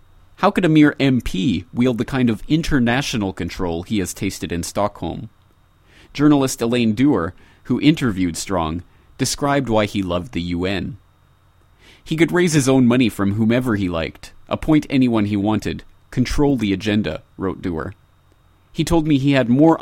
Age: 30-49